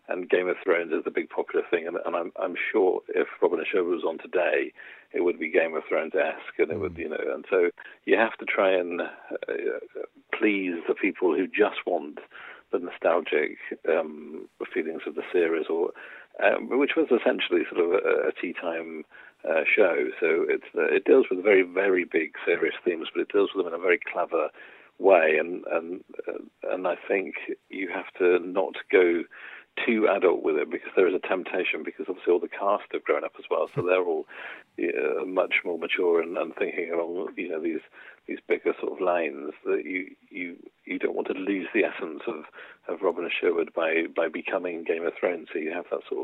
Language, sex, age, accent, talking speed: English, male, 50-69, British, 210 wpm